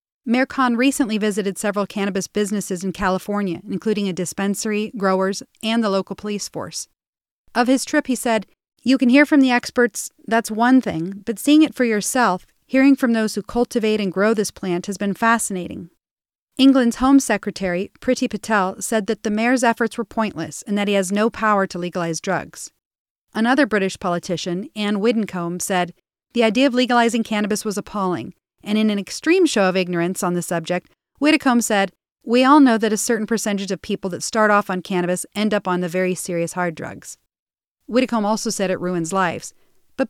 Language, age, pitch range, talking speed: English, 40-59, 185-235 Hz, 185 wpm